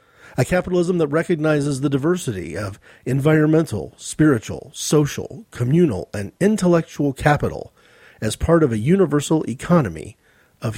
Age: 40-59